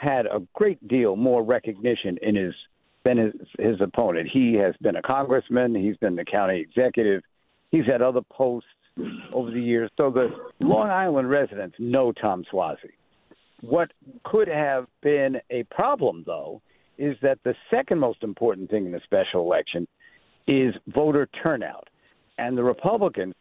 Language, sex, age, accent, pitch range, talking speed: English, male, 60-79, American, 115-145 Hz, 155 wpm